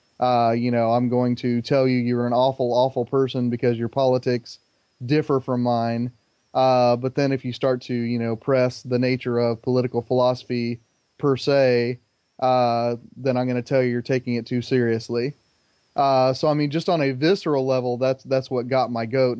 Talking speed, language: 195 wpm, English